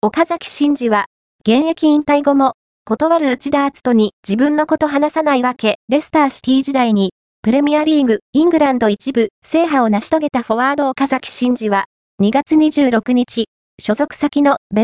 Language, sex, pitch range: Japanese, female, 225-295 Hz